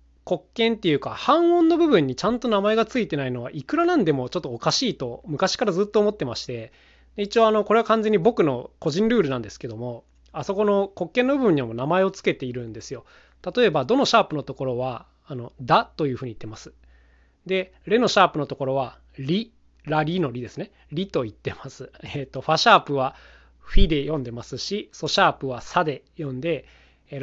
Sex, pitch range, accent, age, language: male, 130-205 Hz, native, 20-39, Japanese